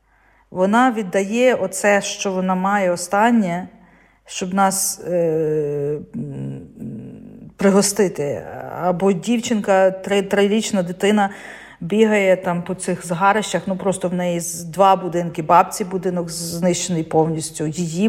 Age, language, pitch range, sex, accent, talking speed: 40-59, Ukrainian, 175-215 Hz, female, native, 115 wpm